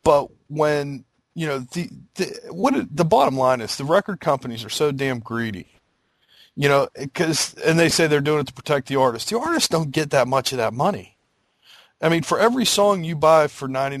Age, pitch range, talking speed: 40-59, 125-160 Hz, 210 wpm